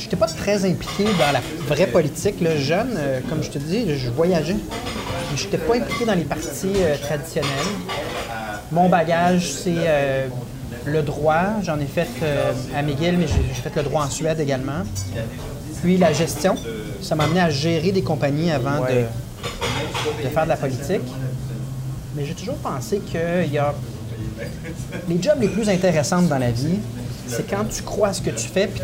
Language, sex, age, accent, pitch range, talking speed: French, male, 30-49, Canadian, 130-180 Hz, 185 wpm